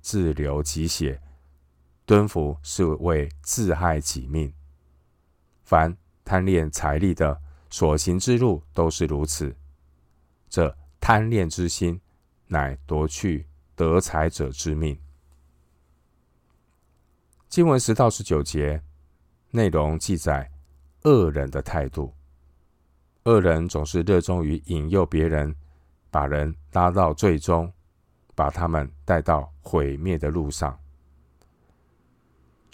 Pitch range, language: 70-85 Hz, Chinese